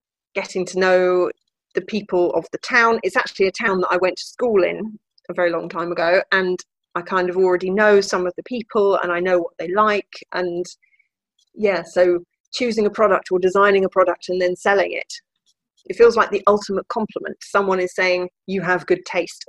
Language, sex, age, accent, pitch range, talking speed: English, female, 30-49, British, 175-200 Hz, 205 wpm